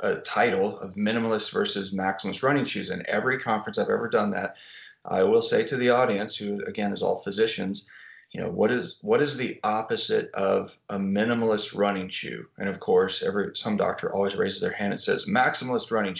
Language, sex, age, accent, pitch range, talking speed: English, male, 30-49, American, 100-145 Hz, 195 wpm